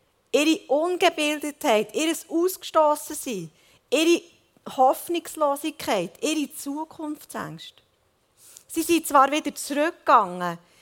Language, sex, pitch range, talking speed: German, female, 215-290 Hz, 70 wpm